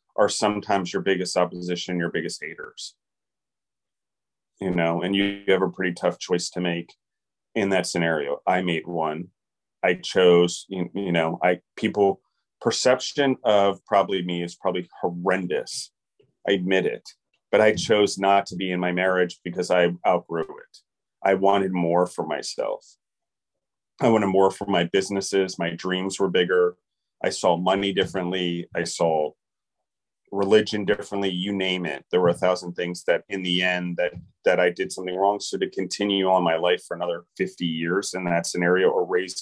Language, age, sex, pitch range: English, 30-49, male, 90-100 Hz